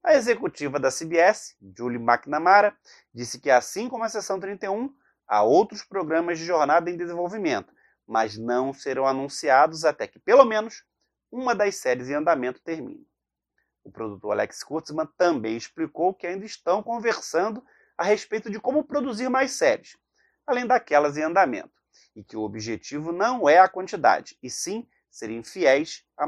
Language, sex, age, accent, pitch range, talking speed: Portuguese, male, 30-49, Brazilian, 145-225 Hz, 155 wpm